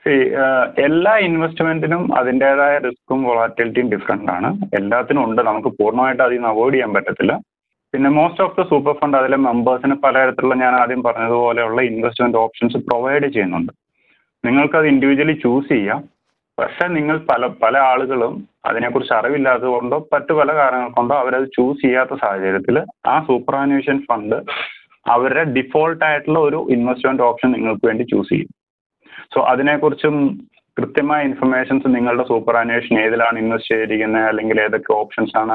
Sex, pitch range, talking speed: male, 115-145 Hz, 130 wpm